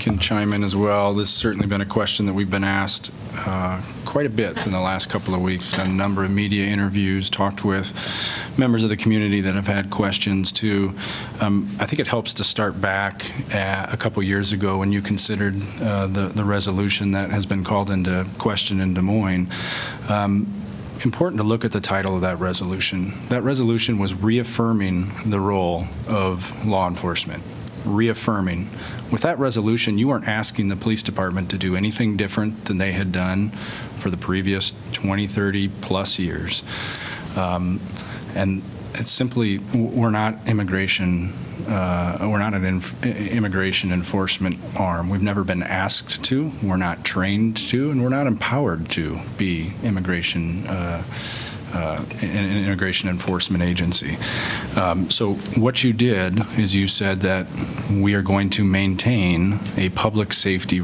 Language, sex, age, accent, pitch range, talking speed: English, male, 30-49, American, 95-110 Hz, 165 wpm